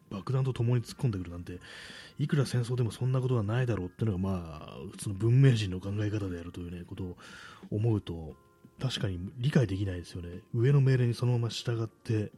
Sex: male